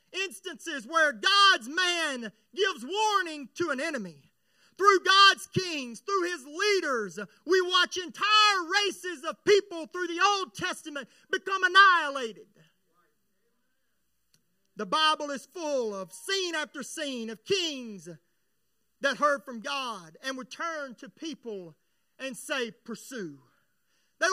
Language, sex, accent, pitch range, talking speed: English, male, American, 230-360 Hz, 125 wpm